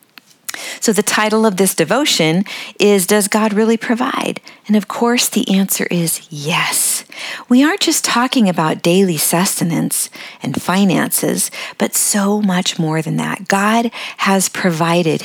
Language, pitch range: English, 155-210 Hz